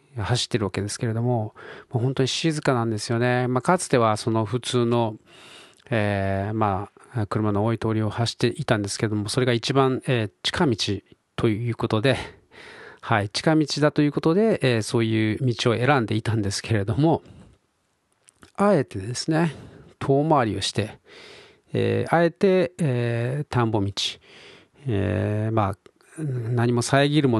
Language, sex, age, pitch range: Japanese, male, 40-59, 110-145 Hz